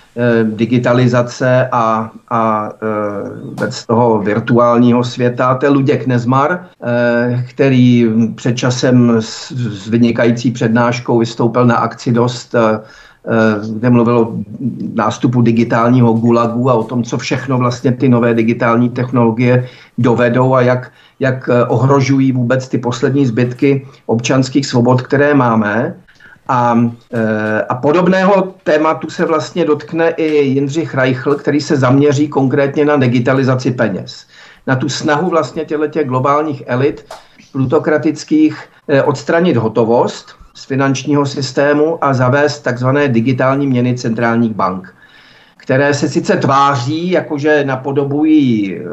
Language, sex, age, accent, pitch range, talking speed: Czech, male, 50-69, native, 120-145 Hz, 115 wpm